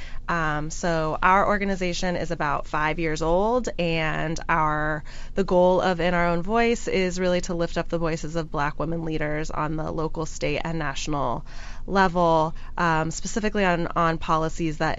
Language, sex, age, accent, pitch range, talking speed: English, female, 20-39, American, 155-180 Hz, 170 wpm